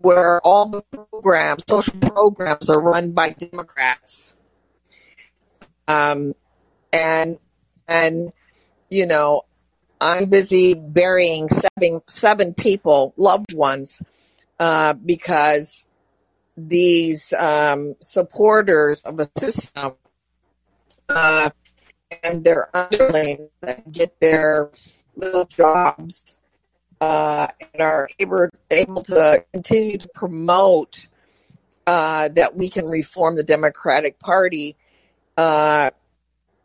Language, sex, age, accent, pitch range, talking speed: English, female, 50-69, American, 150-180 Hz, 95 wpm